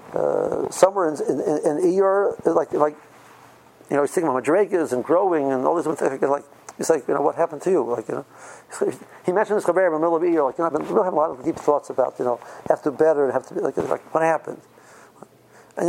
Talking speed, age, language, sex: 265 wpm, 50-69, English, male